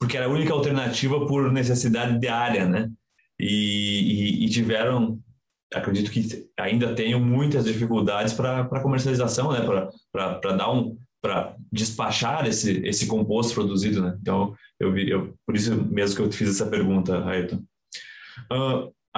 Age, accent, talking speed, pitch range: 20-39, Brazilian, 145 wpm, 105-130 Hz